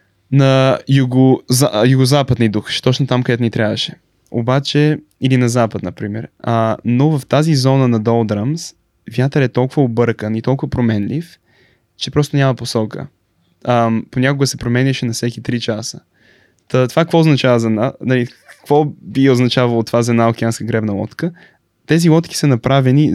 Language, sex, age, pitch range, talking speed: Bulgarian, male, 20-39, 115-140 Hz, 160 wpm